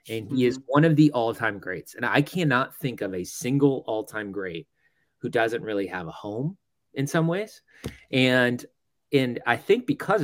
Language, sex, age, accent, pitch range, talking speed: English, male, 30-49, American, 115-150 Hz, 180 wpm